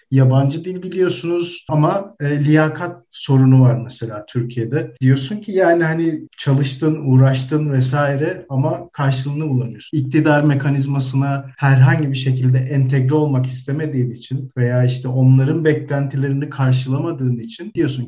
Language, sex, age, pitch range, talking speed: Turkish, male, 50-69, 130-155 Hz, 115 wpm